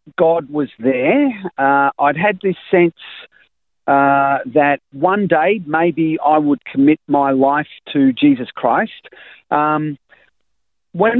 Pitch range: 130-170 Hz